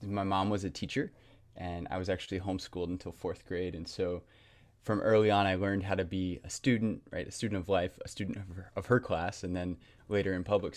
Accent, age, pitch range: American, 20-39, 90-105 Hz